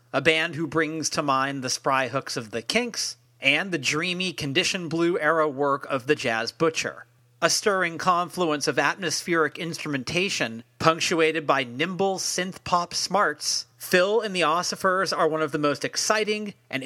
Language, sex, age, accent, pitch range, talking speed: English, male, 40-59, American, 140-180 Hz, 155 wpm